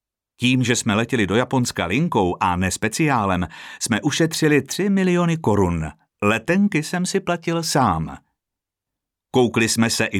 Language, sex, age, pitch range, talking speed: Czech, male, 50-69, 100-145 Hz, 135 wpm